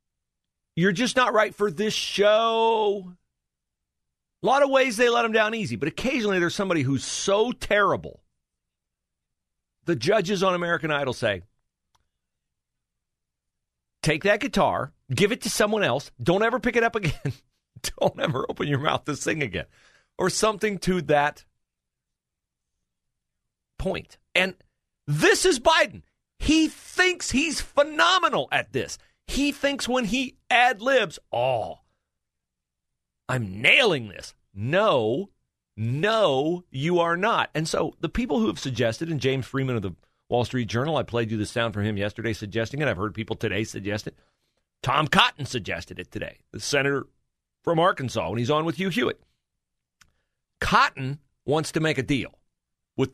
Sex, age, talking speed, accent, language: male, 40-59, 150 wpm, American, English